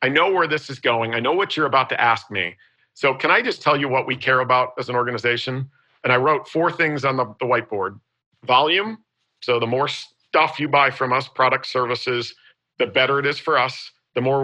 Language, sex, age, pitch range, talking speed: English, male, 50-69, 125-150 Hz, 230 wpm